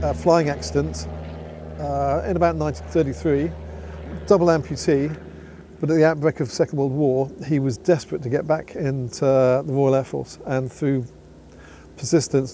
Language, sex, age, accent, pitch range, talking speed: English, male, 50-69, British, 125-145 Hz, 160 wpm